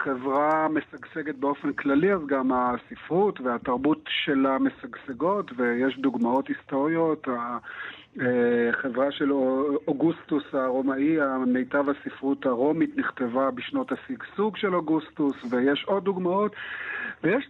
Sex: male